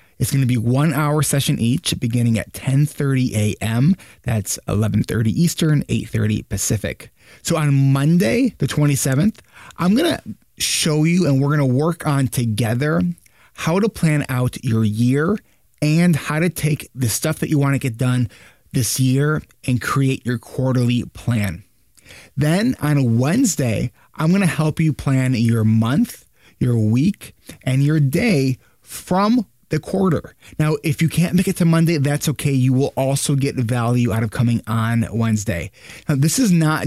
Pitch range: 120-155 Hz